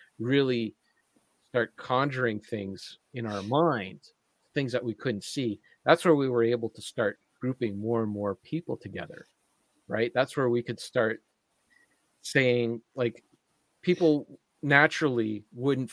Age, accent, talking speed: 40-59, American, 135 wpm